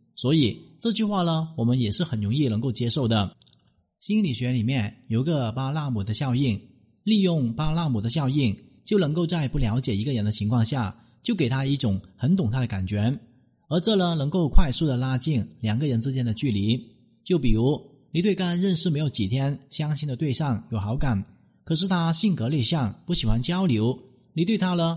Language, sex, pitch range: Chinese, male, 120-165 Hz